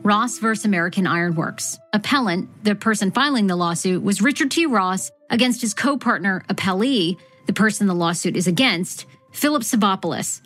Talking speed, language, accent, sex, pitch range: 150 wpm, English, American, female, 170-225 Hz